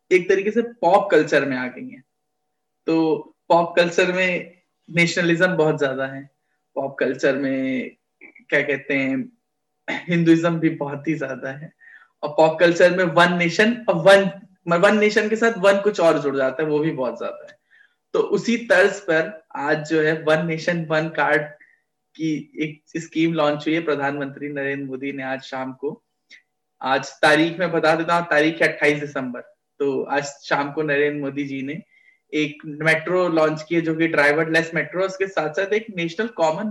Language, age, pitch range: Hindi, 20-39, 150-195 Hz